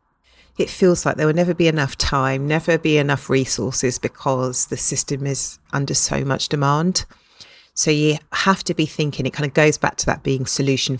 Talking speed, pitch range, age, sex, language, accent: 195 wpm, 135-170 Hz, 40-59, female, English, British